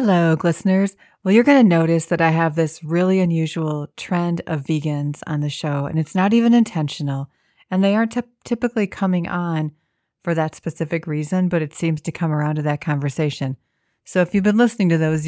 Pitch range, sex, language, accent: 155-185 Hz, female, English, American